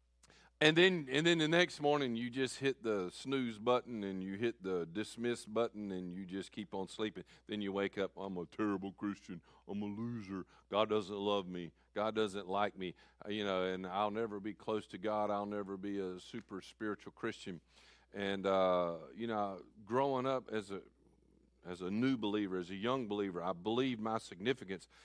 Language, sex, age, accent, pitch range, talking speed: English, male, 50-69, American, 90-120 Hz, 190 wpm